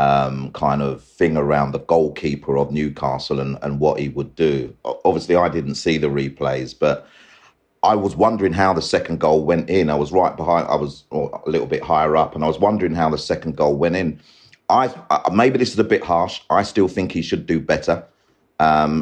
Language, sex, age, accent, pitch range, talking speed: English, male, 40-59, British, 75-85 Hz, 215 wpm